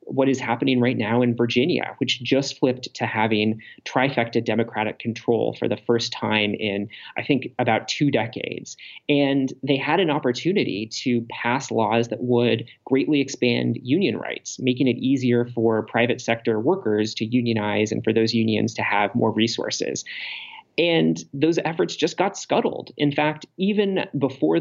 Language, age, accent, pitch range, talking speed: English, 30-49, American, 115-135 Hz, 160 wpm